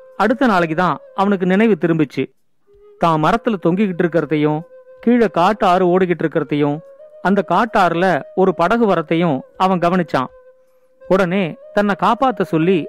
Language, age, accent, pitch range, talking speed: Tamil, 40-59, native, 175-230 Hz, 110 wpm